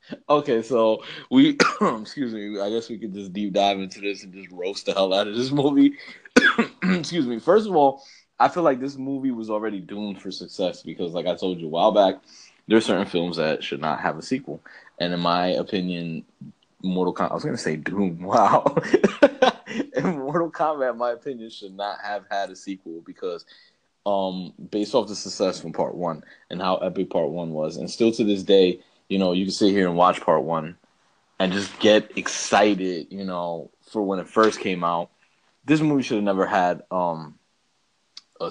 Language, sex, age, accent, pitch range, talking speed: English, male, 20-39, American, 95-115 Hz, 205 wpm